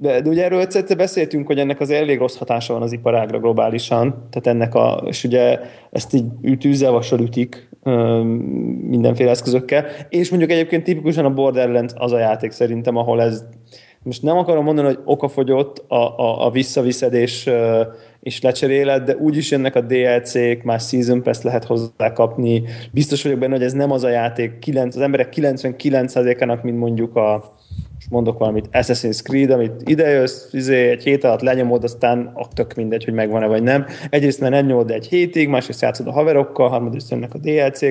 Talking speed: 180 wpm